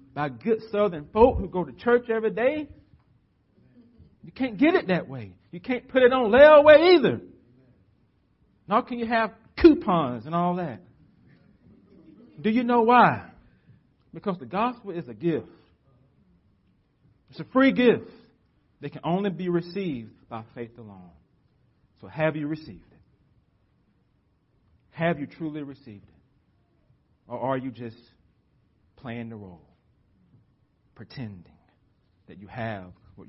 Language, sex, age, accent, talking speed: English, male, 40-59, American, 135 wpm